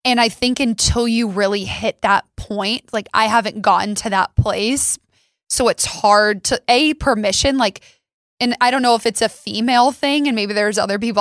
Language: English